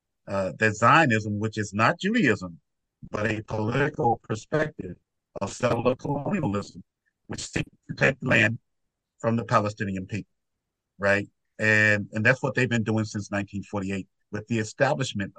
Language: English